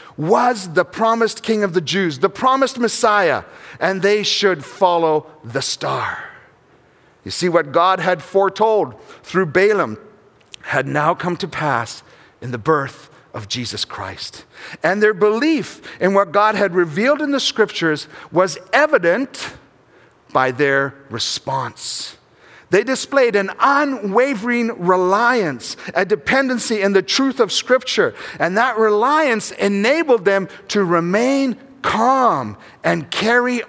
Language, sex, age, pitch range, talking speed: English, male, 50-69, 165-220 Hz, 130 wpm